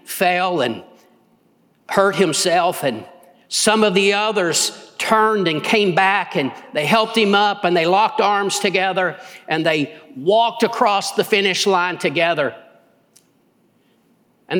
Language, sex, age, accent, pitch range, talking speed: English, male, 50-69, American, 215-290 Hz, 130 wpm